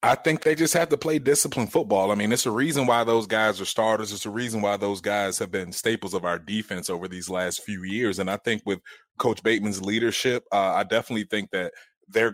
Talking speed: 240 wpm